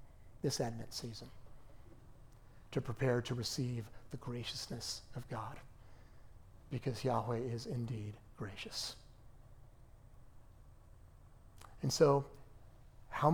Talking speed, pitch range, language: 85 wpm, 110-130 Hz, English